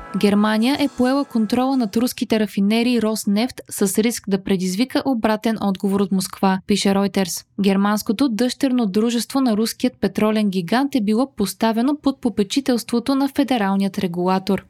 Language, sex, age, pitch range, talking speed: Bulgarian, female, 20-39, 200-255 Hz, 135 wpm